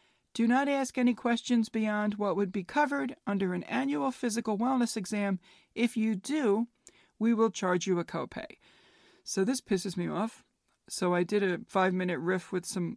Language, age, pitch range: English, 40-59, 180-235 Hz